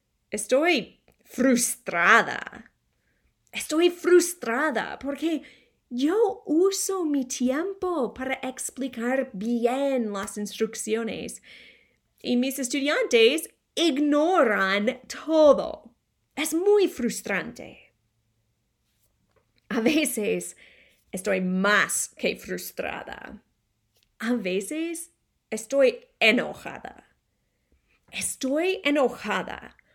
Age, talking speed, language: 30-49, 70 wpm, English